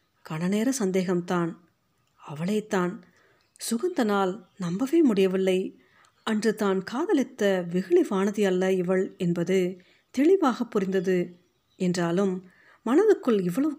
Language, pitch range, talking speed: Tamil, 180-235 Hz, 85 wpm